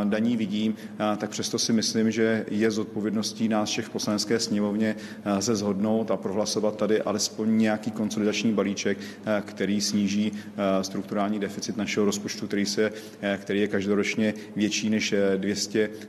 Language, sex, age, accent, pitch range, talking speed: Czech, male, 40-59, native, 100-110 Hz, 135 wpm